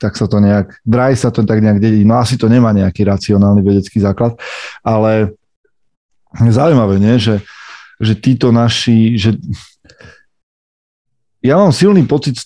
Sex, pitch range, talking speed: male, 105-130 Hz, 140 wpm